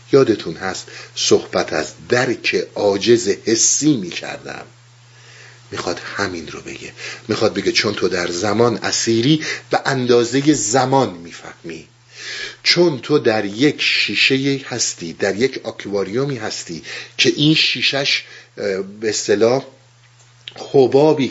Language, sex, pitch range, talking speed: Persian, male, 110-135 Hz, 115 wpm